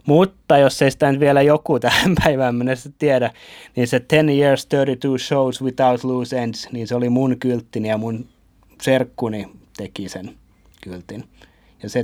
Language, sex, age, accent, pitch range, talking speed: Finnish, male, 30-49, native, 100-135 Hz, 160 wpm